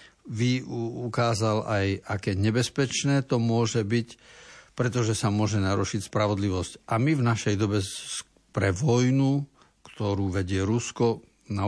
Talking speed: 125 wpm